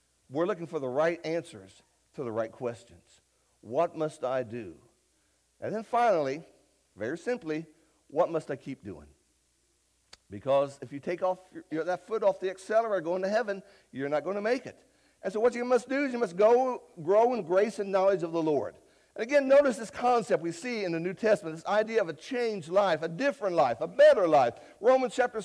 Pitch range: 185-265 Hz